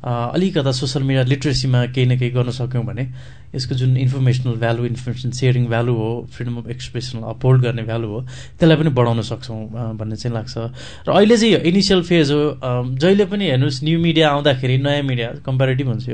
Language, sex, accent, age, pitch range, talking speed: English, male, Indian, 20-39, 130-165 Hz, 95 wpm